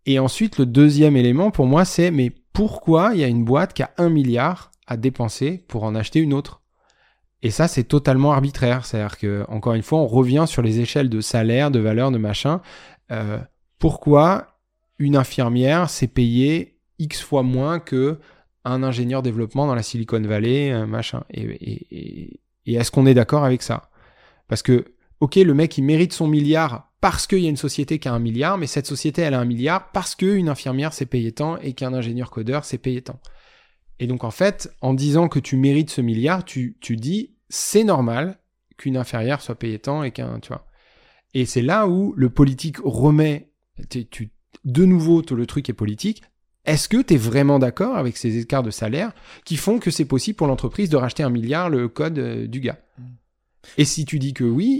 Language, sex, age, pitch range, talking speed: French, male, 20-39, 120-155 Hz, 200 wpm